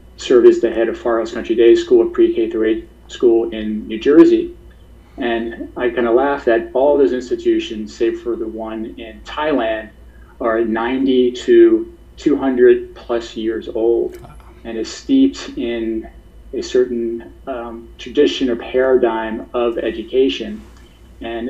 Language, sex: English, male